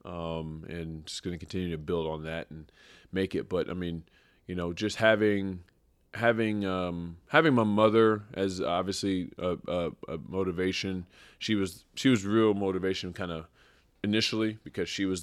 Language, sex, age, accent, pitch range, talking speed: English, male, 20-39, American, 85-100 Hz, 165 wpm